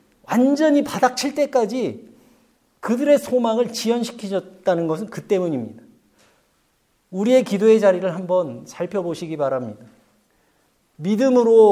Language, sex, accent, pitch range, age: Korean, male, native, 180-255 Hz, 50-69